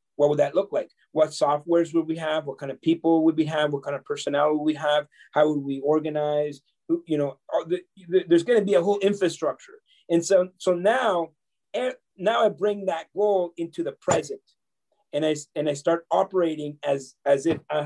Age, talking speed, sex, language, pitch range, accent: 30-49, 205 wpm, male, English, 150-185 Hz, American